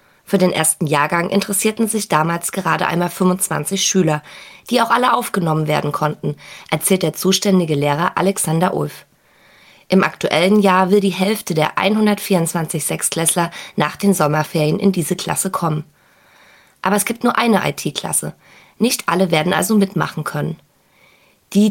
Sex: female